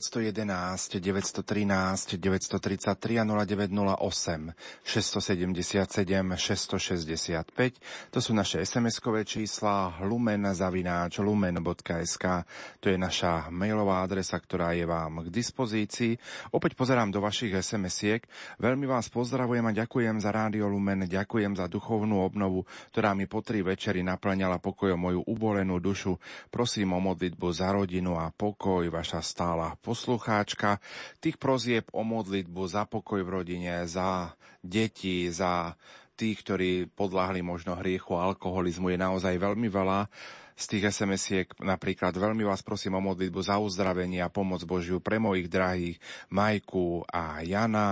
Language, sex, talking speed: Slovak, male, 125 wpm